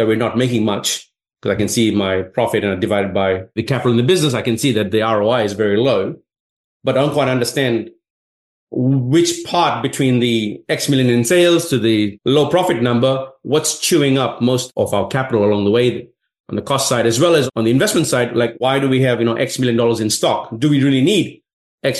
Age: 30-49